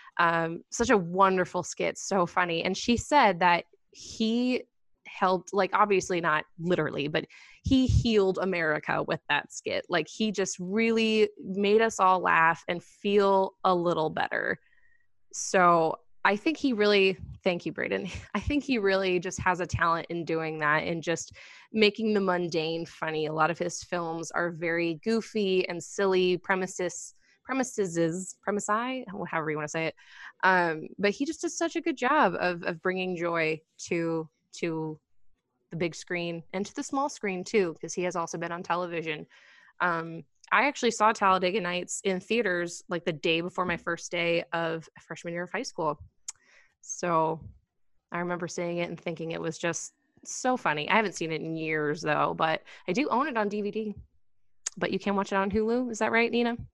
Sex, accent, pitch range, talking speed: female, American, 165-210 Hz, 185 wpm